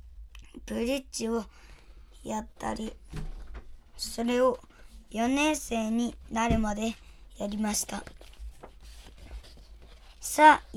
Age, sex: 20-39, male